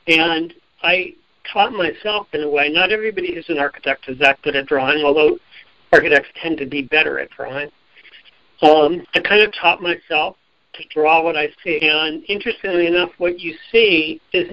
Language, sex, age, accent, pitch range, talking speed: English, male, 50-69, American, 155-180 Hz, 180 wpm